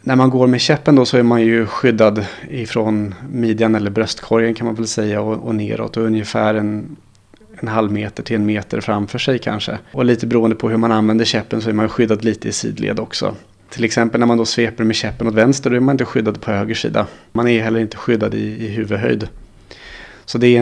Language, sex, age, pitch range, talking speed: Swedish, male, 30-49, 105-120 Hz, 225 wpm